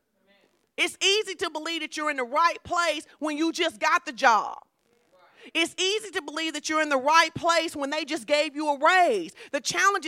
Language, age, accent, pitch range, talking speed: English, 30-49, American, 260-335 Hz, 210 wpm